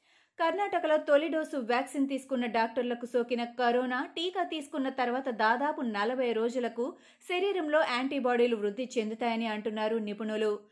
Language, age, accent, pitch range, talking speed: Telugu, 20-39, native, 235-290 Hz, 110 wpm